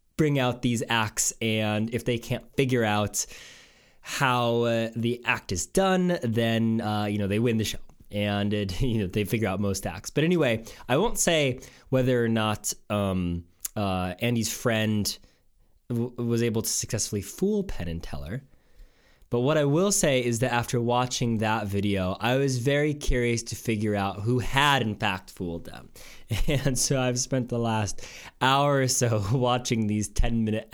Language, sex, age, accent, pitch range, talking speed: English, male, 20-39, American, 105-130 Hz, 170 wpm